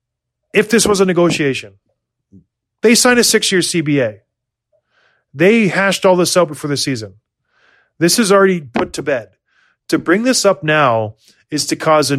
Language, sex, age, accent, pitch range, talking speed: English, male, 30-49, American, 130-175 Hz, 165 wpm